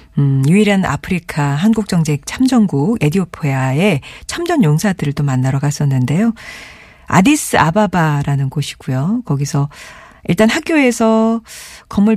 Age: 40-59